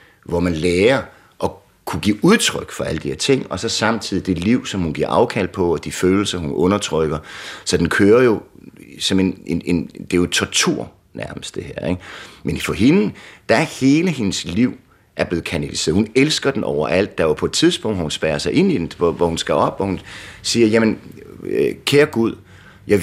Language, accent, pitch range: Danish, native, 85-105 Hz